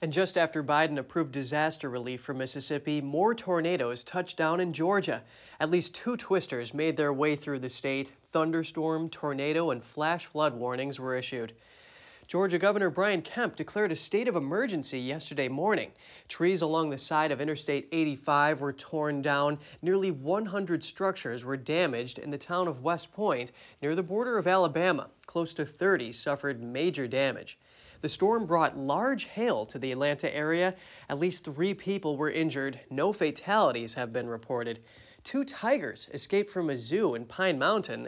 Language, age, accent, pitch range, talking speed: English, 30-49, American, 135-180 Hz, 165 wpm